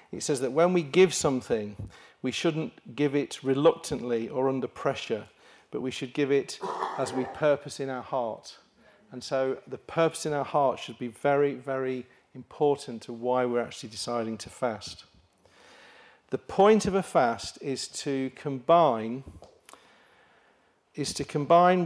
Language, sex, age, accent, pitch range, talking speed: English, male, 40-59, British, 125-150 Hz, 155 wpm